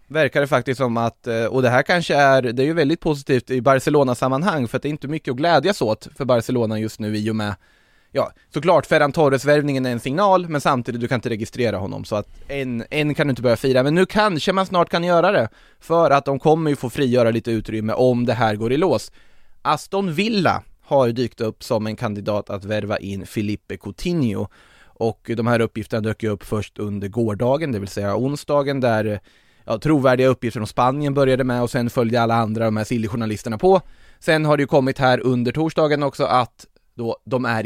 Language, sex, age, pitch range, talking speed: Swedish, male, 20-39, 110-140 Hz, 220 wpm